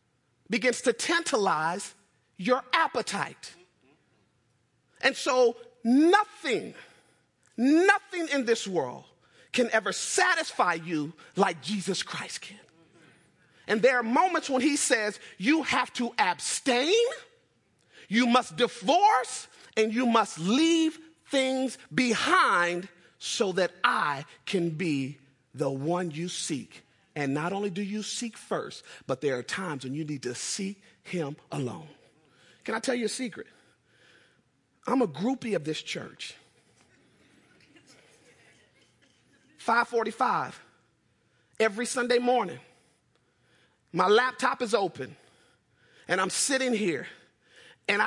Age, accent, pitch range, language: 40-59, American, 175-255 Hz, English